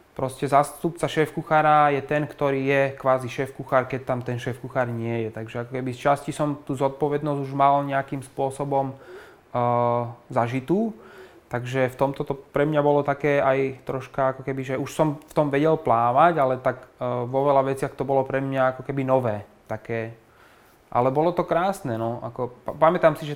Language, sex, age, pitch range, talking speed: Slovak, male, 20-39, 125-145 Hz, 175 wpm